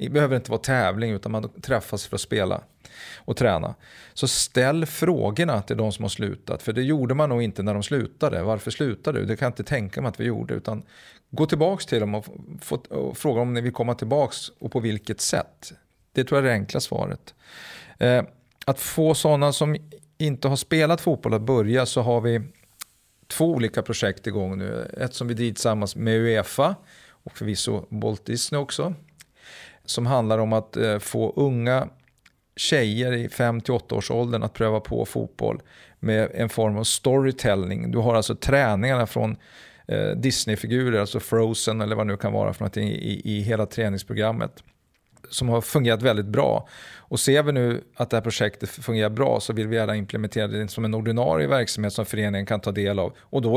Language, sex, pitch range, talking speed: Swedish, male, 105-130 Hz, 185 wpm